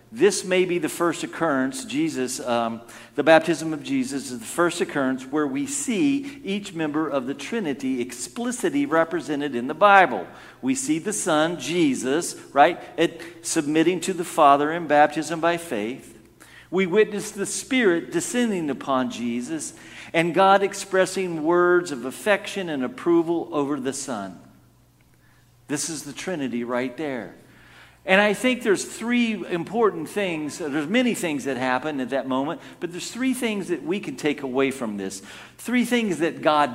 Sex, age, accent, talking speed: male, 50-69, American, 160 wpm